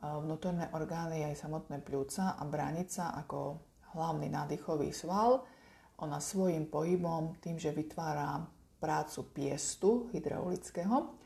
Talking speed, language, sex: 105 wpm, Slovak, female